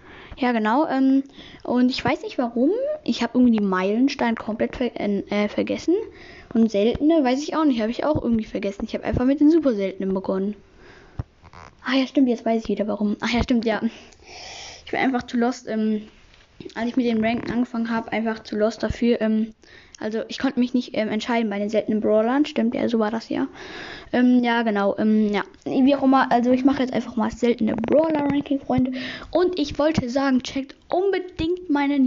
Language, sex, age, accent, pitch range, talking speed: German, female, 10-29, German, 225-280 Hz, 200 wpm